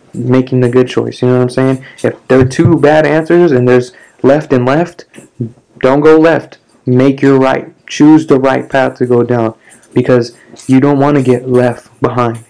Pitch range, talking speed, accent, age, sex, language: 120-135 Hz, 195 wpm, American, 20-39, male, English